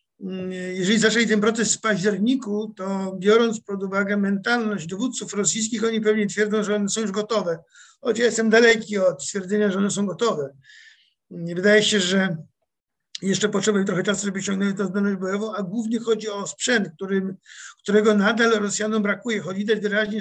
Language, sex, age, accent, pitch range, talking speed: Polish, male, 50-69, native, 200-225 Hz, 165 wpm